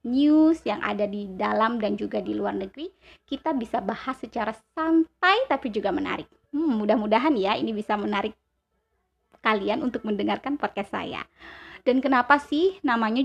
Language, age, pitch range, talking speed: Indonesian, 20-39, 215-290 Hz, 150 wpm